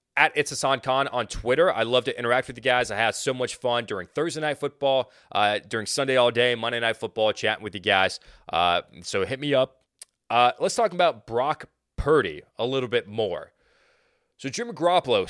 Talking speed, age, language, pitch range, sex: 205 wpm, 30-49, English, 115-145 Hz, male